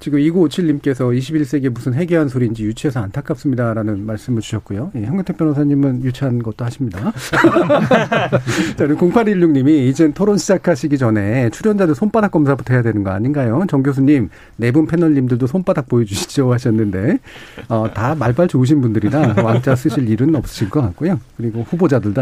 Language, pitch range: Korean, 120-160 Hz